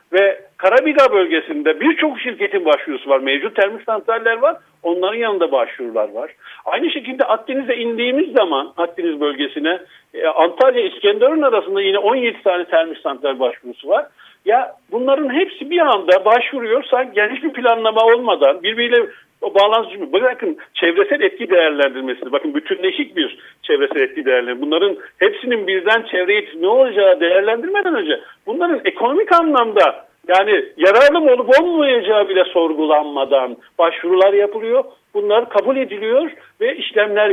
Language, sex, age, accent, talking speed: Turkish, male, 50-69, native, 125 wpm